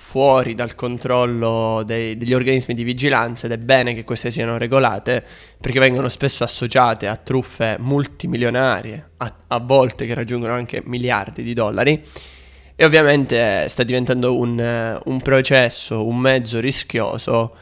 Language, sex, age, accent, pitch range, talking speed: Italian, male, 20-39, native, 115-130 Hz, 135 wpm